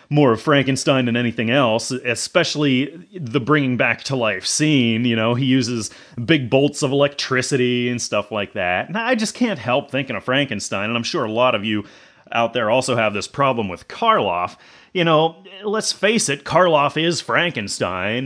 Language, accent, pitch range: English, American, 115-150 Hz